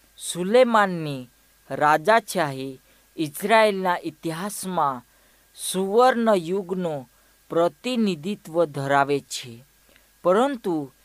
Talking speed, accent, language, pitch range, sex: 55 wpm, native, Hindi, 145-205 Hz, female